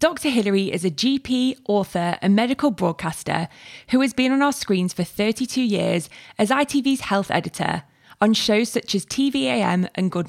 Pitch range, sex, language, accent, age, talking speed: 180-245 Hz, female, English, British, 20-39, 170 wpm